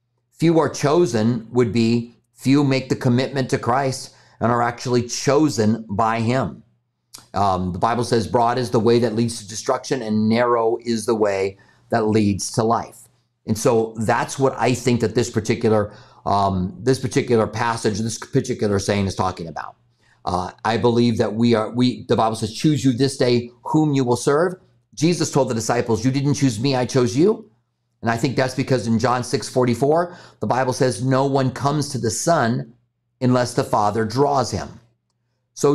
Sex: male